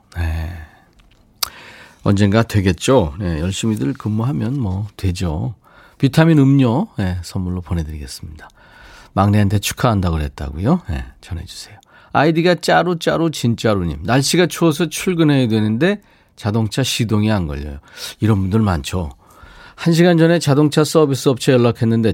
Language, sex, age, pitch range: Korean, male, 40-59, 95-140 Hz